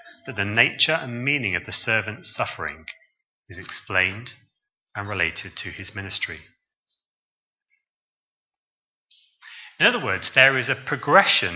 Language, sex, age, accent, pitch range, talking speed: English, male, 30-49, British, 95-135 Hz, 120 wpm